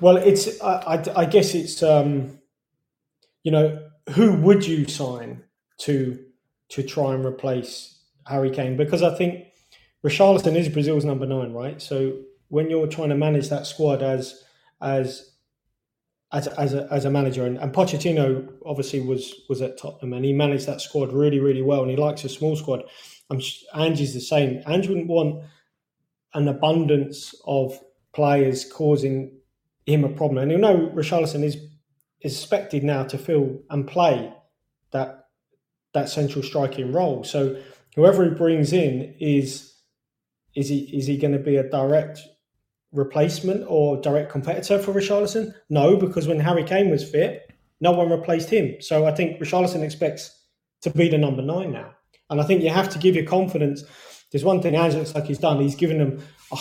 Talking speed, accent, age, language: 170 wpm, British, 20-39, English